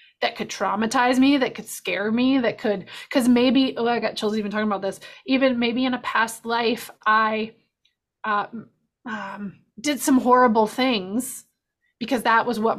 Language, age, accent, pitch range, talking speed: English, 20-39, American, 205-250 Hz, 175 wpm